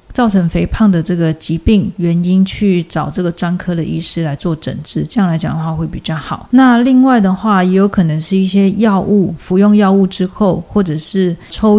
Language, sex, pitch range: Chinese, female, 165-205 Hz